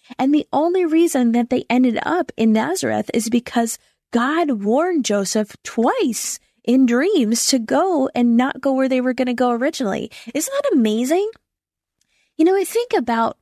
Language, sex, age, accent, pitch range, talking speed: English, female, 10-29, American, 205-255 Hz, 170 wpm